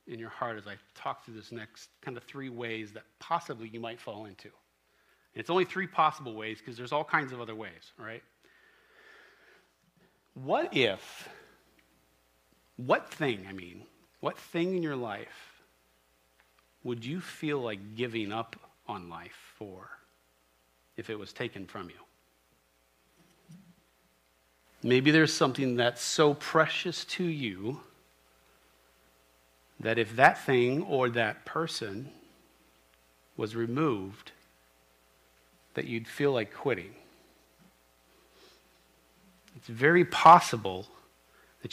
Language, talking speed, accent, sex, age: English, 120 wpm, American, male, 40-59